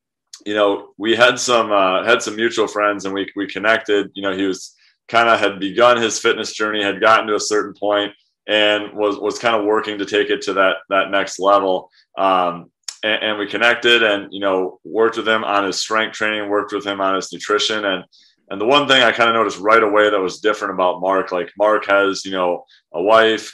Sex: male